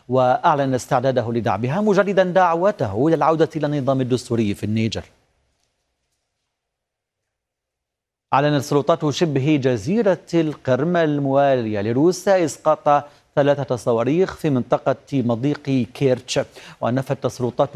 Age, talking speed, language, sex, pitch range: 40-59, 90 wpm, Arabic, male, 120-165 Hz